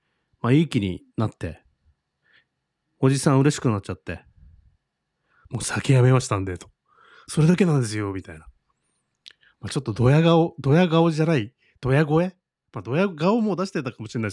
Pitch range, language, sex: 105-160 Hz, Japanese, male